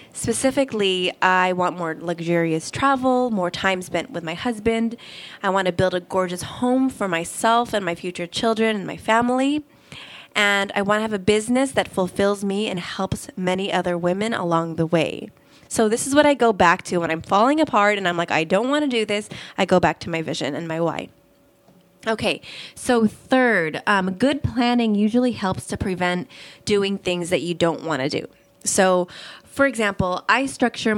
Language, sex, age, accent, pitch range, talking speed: English, female, 20-39, American, 175-225 Hz, 190 wpm